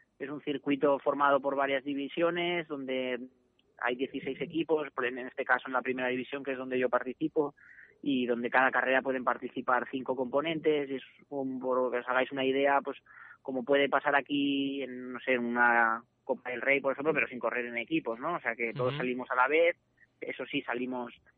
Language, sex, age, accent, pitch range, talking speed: Spanish, male, 20-39, Spanish, 125-145 Hz, 195 wpm